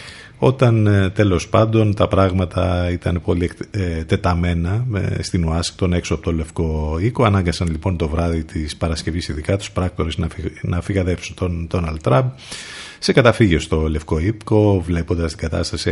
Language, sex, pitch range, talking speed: Greek, male, 85-110 Hz, 145 wpm